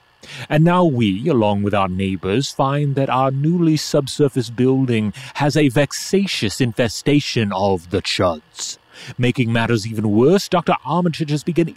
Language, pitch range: English, 110-155 Hz